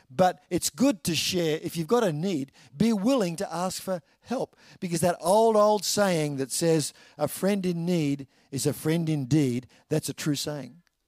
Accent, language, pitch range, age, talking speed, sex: Australian, English, 145-205 Hz, 50-69, 190 wpm, male